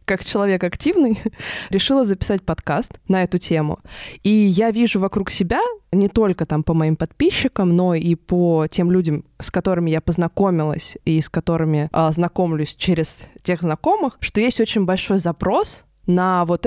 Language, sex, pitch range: Russian, female, 170-205 Hz